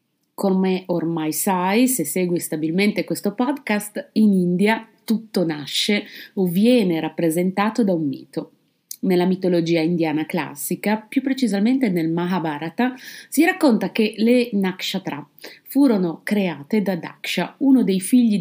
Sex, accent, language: female, native, Italian